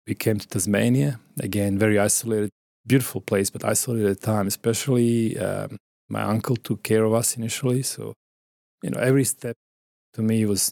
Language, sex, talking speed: English, male, 175 wpm